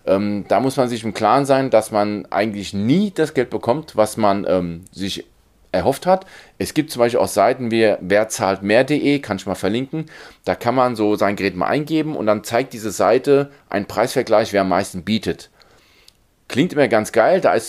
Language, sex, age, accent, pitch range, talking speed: German, male, 40-59, German, 100-125 Hz, 195 wpm